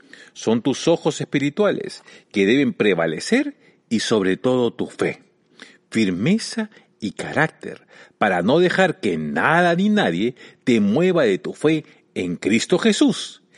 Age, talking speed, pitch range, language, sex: 50-69, 135 wpm, 160-245 Hz, Spanish, male